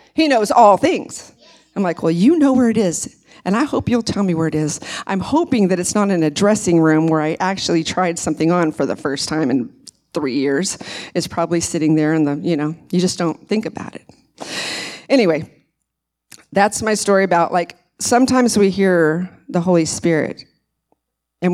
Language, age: English, 40-59